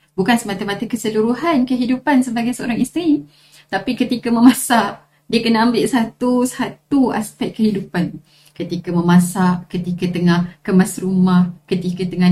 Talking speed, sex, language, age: 115 wpm, female, Malay, 30-49